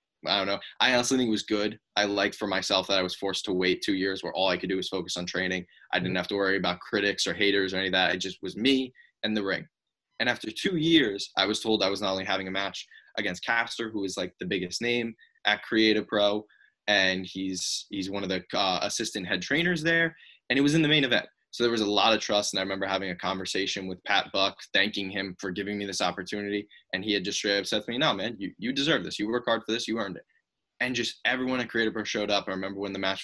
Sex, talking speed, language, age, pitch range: male, 275 wpm, English, 20-39, 95-115 Hz